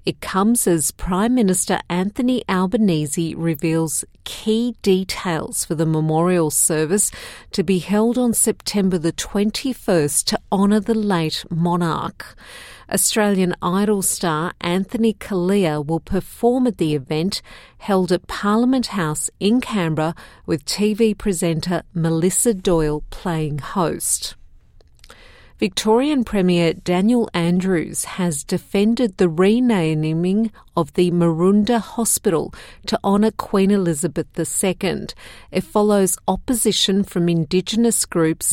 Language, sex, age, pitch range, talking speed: English, female, 50-69, 170-215 Hz, 110 wpm